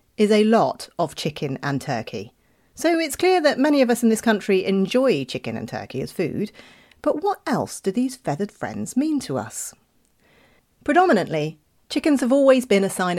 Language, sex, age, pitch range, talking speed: English, female, 40-59, 170-255 Hz, 180 wpm